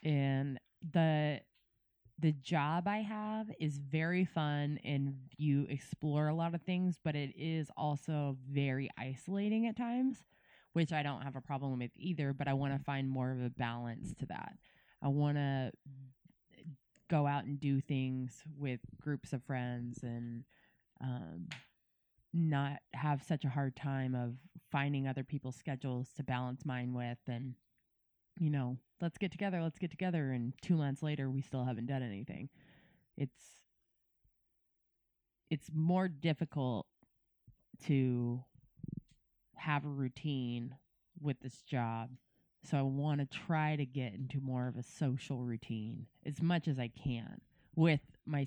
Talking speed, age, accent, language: 150 wpm, 20-39, American, English